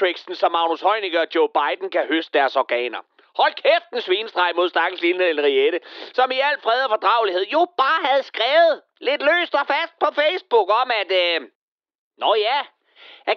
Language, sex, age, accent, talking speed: Danish, male, 30-49, native, 165 wpm